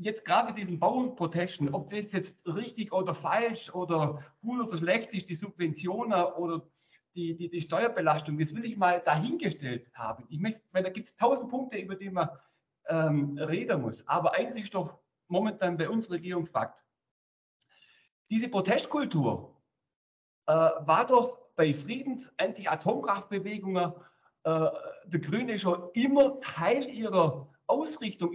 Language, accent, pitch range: German, German, 170-235 Hz